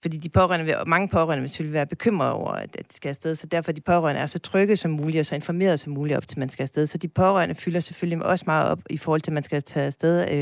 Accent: native